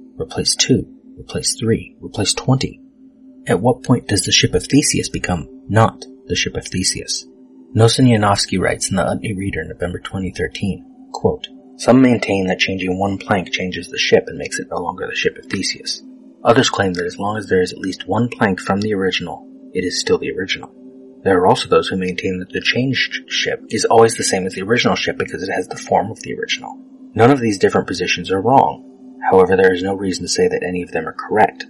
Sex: male